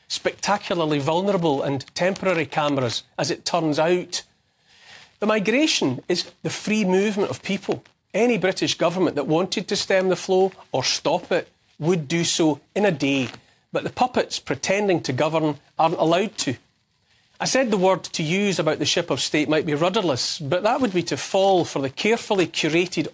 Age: 40-59